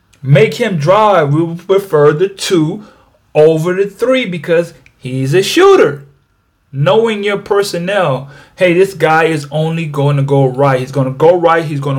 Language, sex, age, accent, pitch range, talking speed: English, male, 30-49, American, 140-190 Hz, 170 wpm